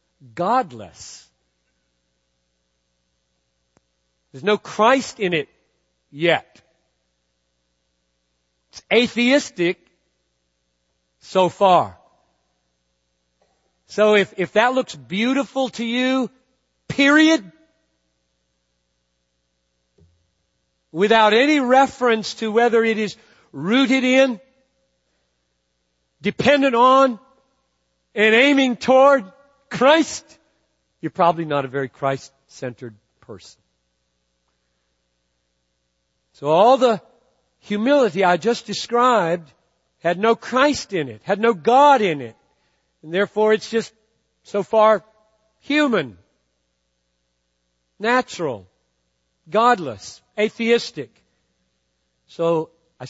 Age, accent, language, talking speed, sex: 50-69, American, English, 80 wpm, male